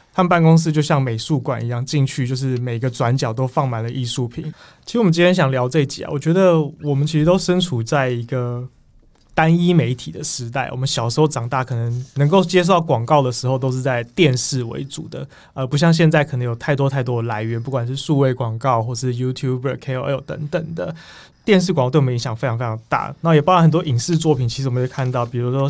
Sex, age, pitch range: male, 20-39, 130-160 Hz